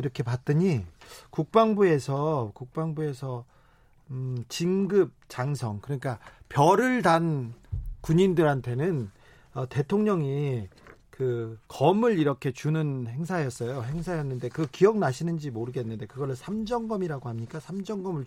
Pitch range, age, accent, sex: 130-175 Hz, 40-59, native, male